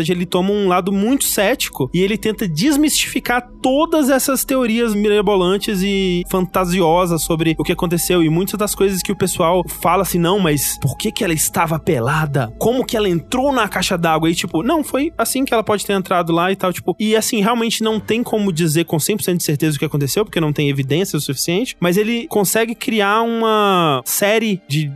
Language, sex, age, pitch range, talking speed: Portuguese, male, 20-39, 155-210 Hz, 205 wpm